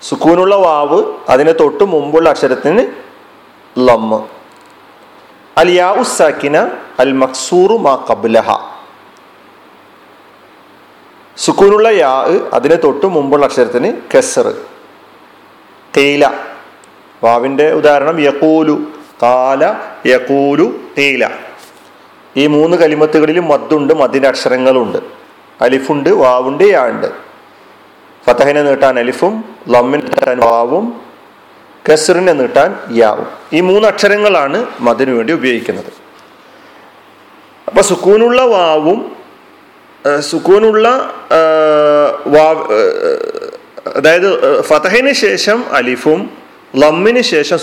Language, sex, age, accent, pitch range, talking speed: Malayalam, male, 40-59, native, 135-225 Hz, 75 wpm